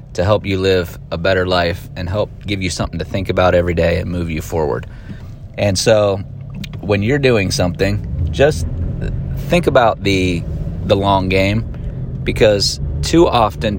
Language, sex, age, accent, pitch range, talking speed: English, male, 30-49, American, 95-115 Hz, 160 wpm